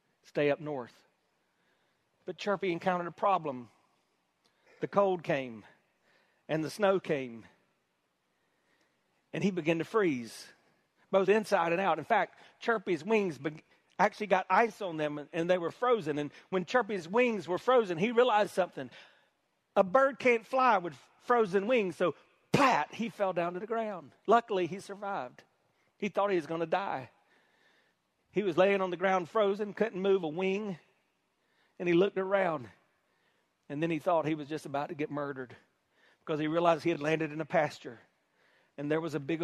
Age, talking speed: 40-59, 170 wpm